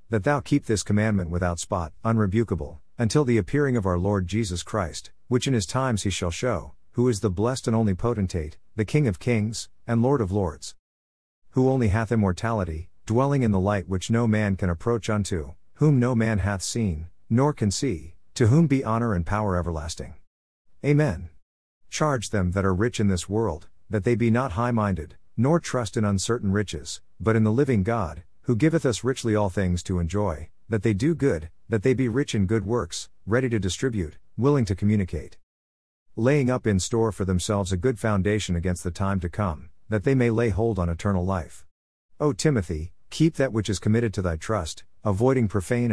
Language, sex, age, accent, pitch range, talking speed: English, male, 50-69, American, 90-120 Hz, 195 wpm